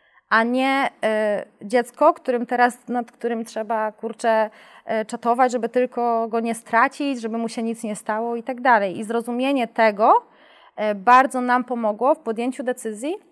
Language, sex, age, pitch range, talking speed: Polish, female, 20-39, 225-270 Hz, 160 wpm